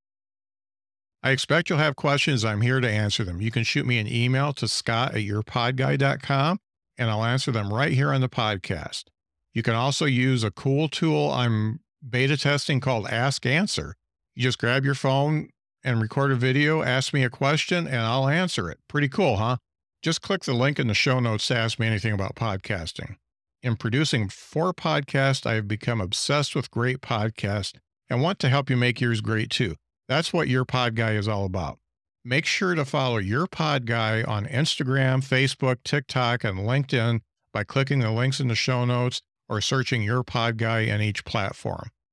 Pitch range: 110-140 Hz